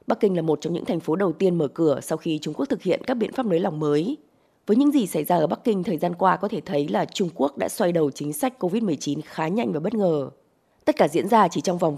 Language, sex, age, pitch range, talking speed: Vietnamese, female, 20-39, 155-215 Hz, 295 wpm